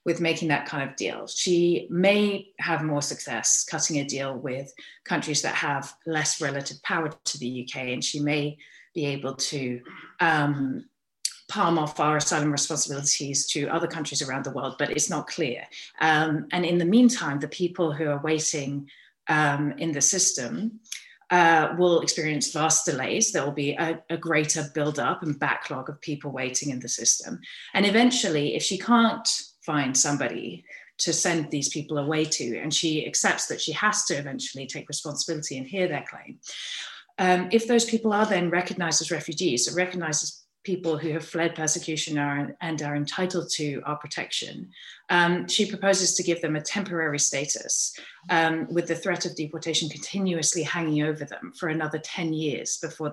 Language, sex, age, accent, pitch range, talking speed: English, female, 30-49, British, 145-175 Hz, 175 wpm